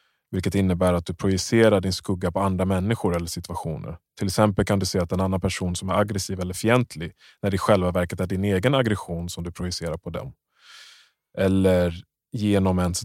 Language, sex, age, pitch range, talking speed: Swedish, male, 20-39, 85-100 Hz, 200 wpm